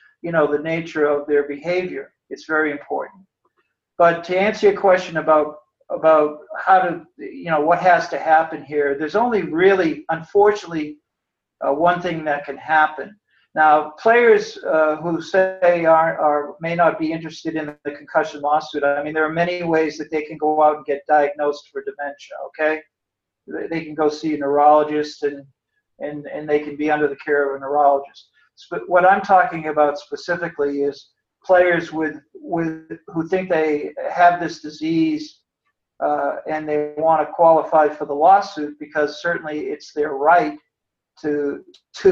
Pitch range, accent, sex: 150-180 Hz, American, male